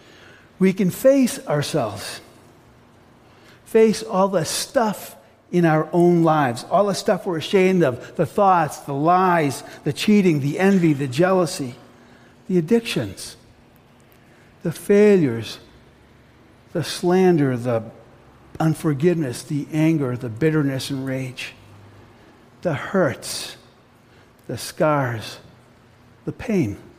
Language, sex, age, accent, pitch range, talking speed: English, male, 60-79, American, 120-160 Hz, 105 wpm